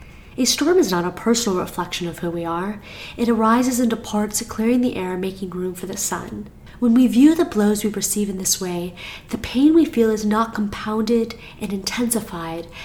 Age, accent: 30-49, American